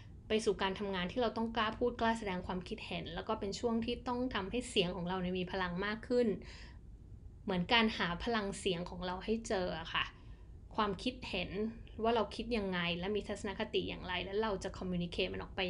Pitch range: 185-225 Hz